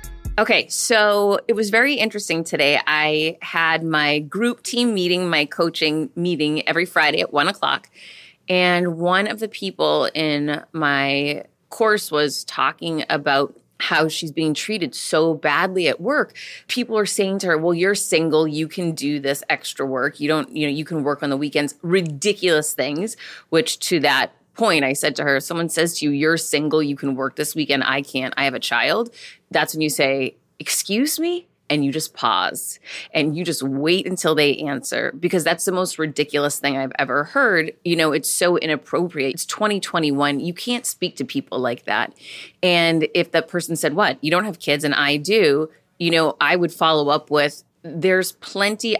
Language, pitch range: English, 145-180 Hz